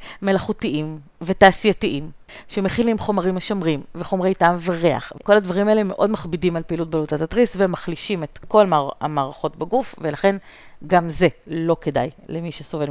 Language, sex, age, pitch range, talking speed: Hebrew, female, 40-59, 160-200 Hz, 135 wpm